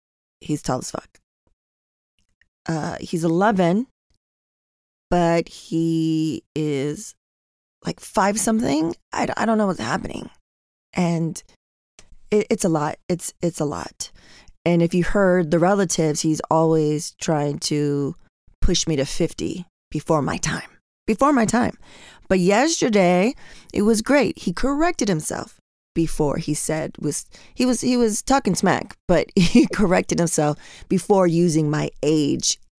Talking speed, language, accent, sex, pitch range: 135 wpm, English, American, female, 150-195 Hz